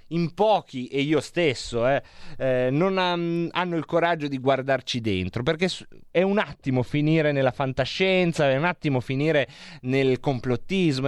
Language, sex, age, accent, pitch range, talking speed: Italian, male, 30-49, native, 120-160 Hz, 145 wpm